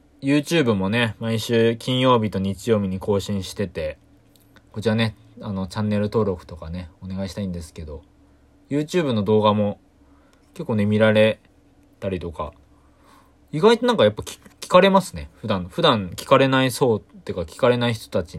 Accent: native